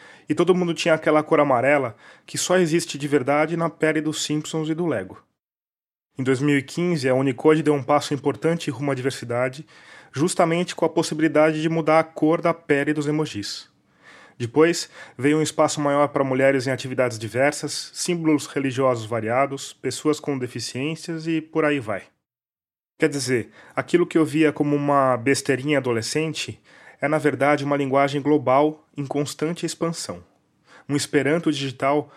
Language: Portuguese